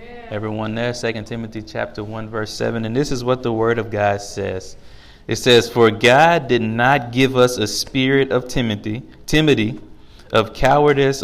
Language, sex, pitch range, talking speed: English, male, 110-130 Hz, 170 wpm